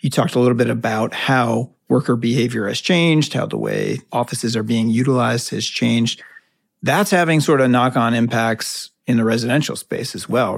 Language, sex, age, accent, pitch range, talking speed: English, male, 40-59, American, 115-130 Hz, 180 wpm